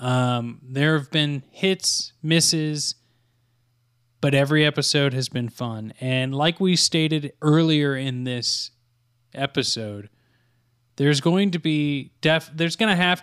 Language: English